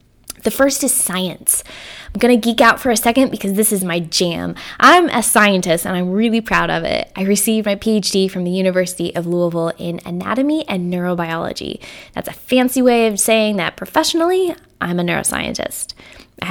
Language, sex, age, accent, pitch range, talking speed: English, female, 10-29, American, 180-245 Hz, 185 wpm